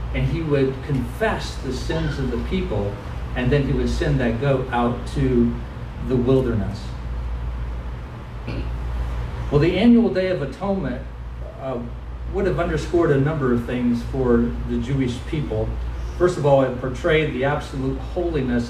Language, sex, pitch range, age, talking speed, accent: English, male, 115-165 Hz, 50-69, 150 wpm, American